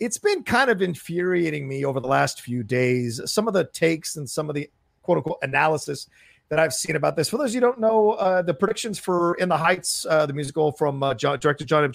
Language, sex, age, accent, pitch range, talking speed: English, male, 40-59, American, 145-210 Hz, 250 wpm